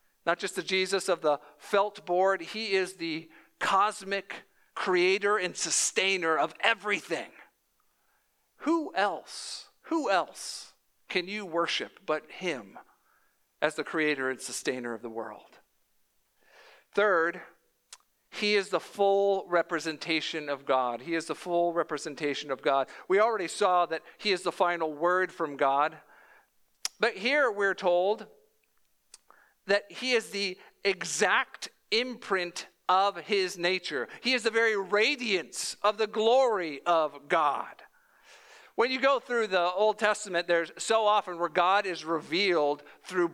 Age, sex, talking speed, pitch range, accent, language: 50-69, male, 135 wpm, 165-210 Hz, American, English